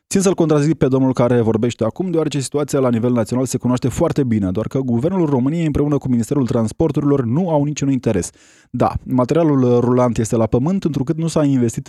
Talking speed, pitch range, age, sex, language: 195 wpm, 120-155 Hz, 20-39, male, Romanian